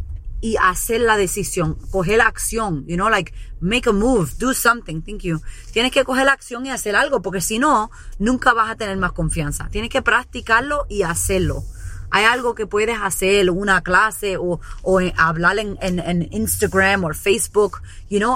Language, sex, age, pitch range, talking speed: English, female, 20-39, 195-250 Hz, 190 wpm